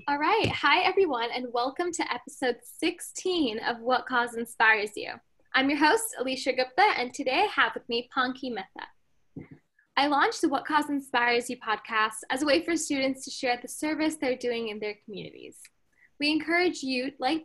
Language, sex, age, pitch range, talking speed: English, female, 10-29, 240-300 Hz, 180 wpm